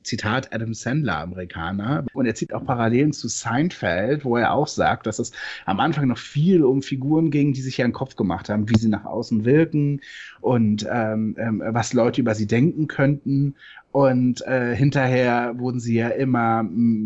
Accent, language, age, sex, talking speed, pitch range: German, German, 30-49, male, 185 wpm, 110-130 Hz